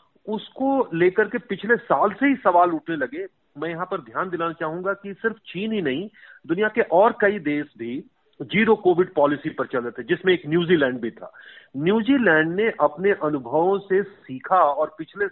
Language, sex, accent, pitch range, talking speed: Hindi, male, native, 155-210 Hz, 185 wpm